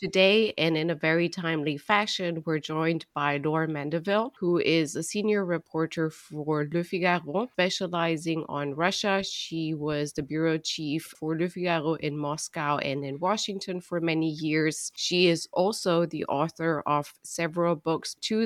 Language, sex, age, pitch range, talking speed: English, female, 30-49, 150-180 Hz, 155 wpm